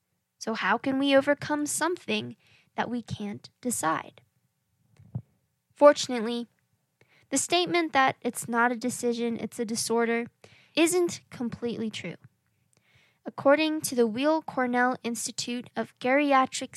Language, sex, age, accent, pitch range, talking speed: English, female, 10-29, American, 230-275 Hz, 115 wpm